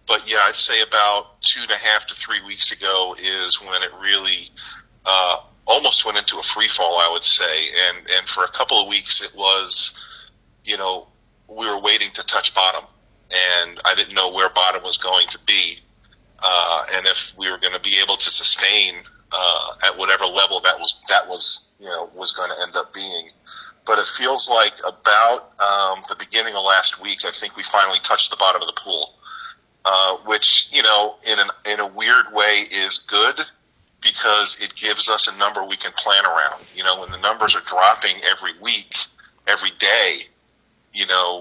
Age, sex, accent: 40-59, male, American